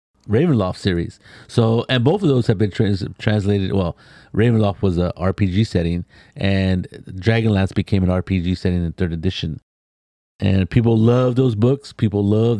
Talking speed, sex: 150 wpm, male